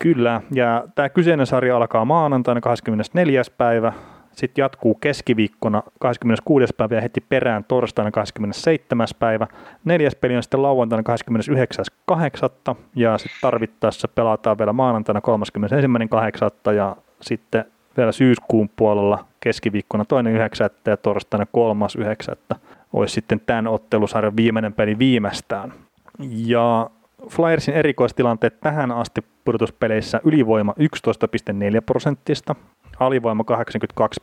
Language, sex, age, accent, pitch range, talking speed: Finnish, male, 30-49, native, 110-125 Hz, 105 wpm